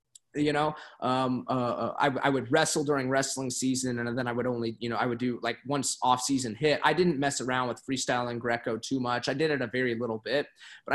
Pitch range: 120-140 Hz